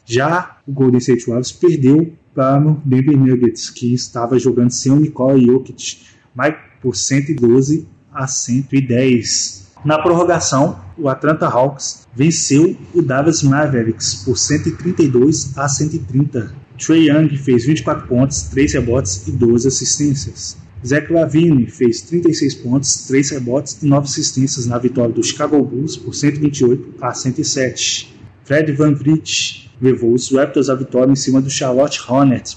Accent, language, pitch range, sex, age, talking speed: Brazilian, Portuguese, 125-150 Hz, male, 20-39, 140 wpm